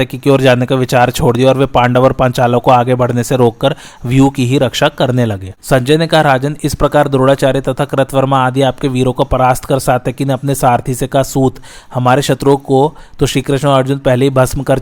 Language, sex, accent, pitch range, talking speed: Hindi, male, native, 125-140 Hz, 160 wpm